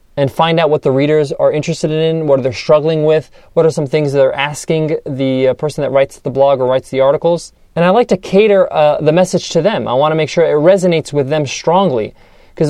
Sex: male